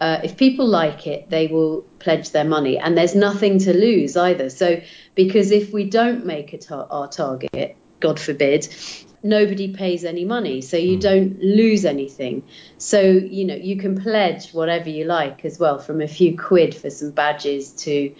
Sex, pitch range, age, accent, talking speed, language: female, 155-190 Hz, 40-59, British, 180 wpm, English